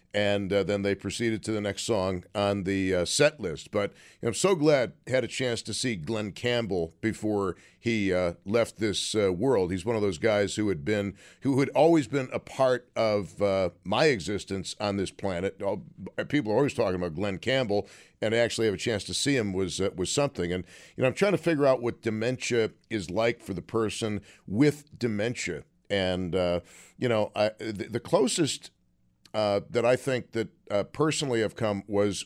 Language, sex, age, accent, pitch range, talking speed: English, male, 50-69, American, 100-135 Hz, 205 wpm